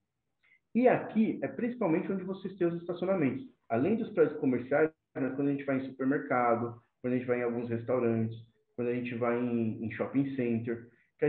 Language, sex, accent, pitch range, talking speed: Portuguese, male, Brazilian, 130-190 Hz, 185 wpm